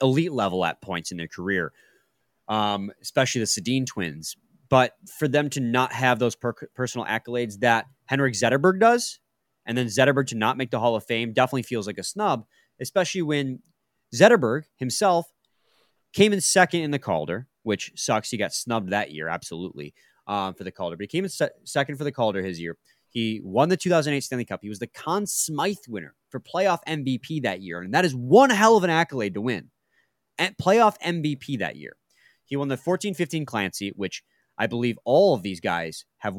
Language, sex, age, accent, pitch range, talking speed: English, male, 30-49, American, 110-150 Hz, 195 wpm